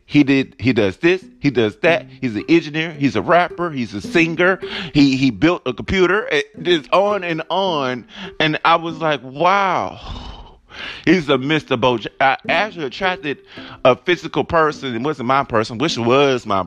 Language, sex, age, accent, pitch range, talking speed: English, male, 30-49, American, 115-165 Hz, 175 wpm